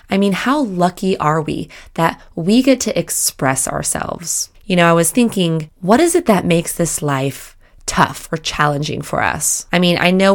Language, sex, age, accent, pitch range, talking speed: English, female, 20-39, American, 160-205 Hz, 190 wpm